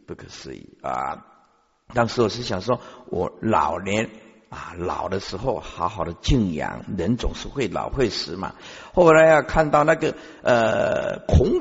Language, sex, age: Chinese, male, 50-69